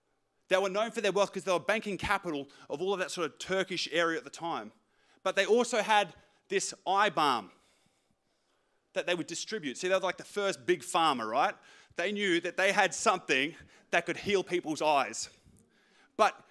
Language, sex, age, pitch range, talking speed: English, male, 30-49, 165-210 Hz, 195 wpm